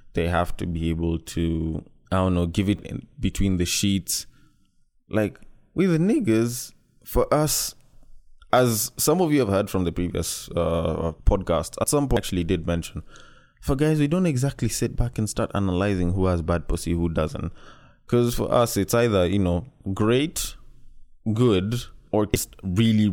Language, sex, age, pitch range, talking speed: English, male, 20-39, 90-120 Hz, 175 wpm